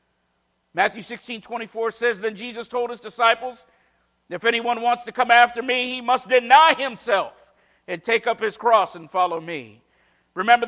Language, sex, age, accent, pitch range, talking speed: English, male, 50-69, American, 200-255 Hz, 165 wpm